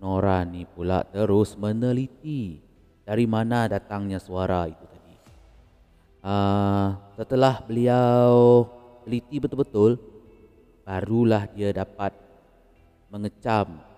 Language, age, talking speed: Malay, 30-49, 85 wpm